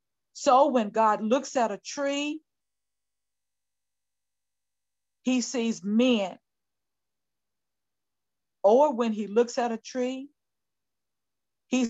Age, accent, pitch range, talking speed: 50-69, American, 185-250 Hz, 90 wpm